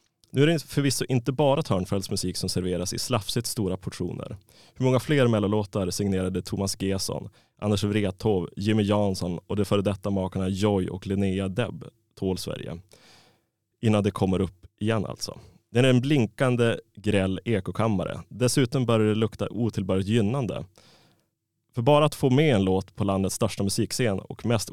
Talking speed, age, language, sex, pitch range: 165 wpm, 20-39, Swedish, male, 95-120 Hz